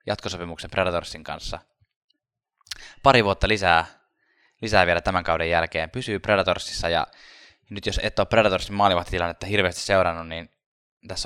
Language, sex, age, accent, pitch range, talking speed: Finnish, male, 10-29, native, 85-100 Hz, 130 wpm